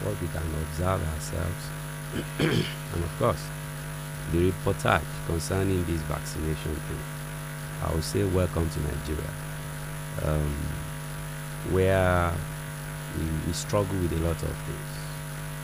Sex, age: male, 50-69